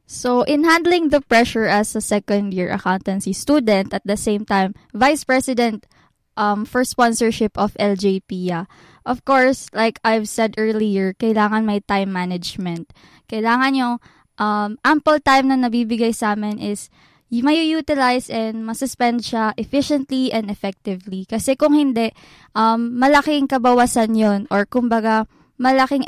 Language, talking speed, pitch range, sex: Filipino, 140 wpm, 210-260 Hz, female